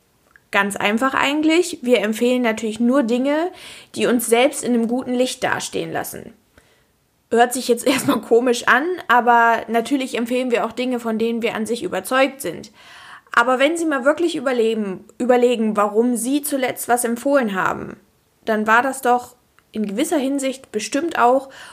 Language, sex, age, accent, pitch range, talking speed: German, female, 20-39, German, 215-250 Hz, 155 wpm